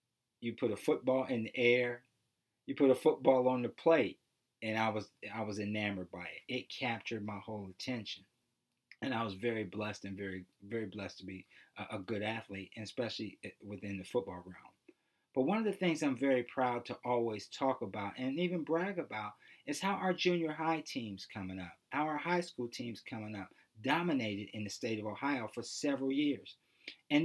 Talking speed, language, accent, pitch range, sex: 195 wpm, English, American, 110-165 Hz, male